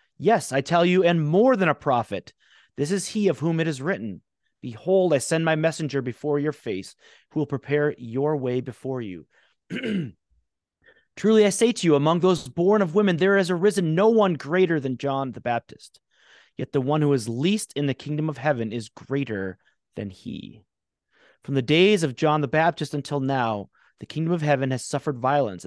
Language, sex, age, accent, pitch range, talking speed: English, male, 30-49, American, 120-165 Hz, 195 wpm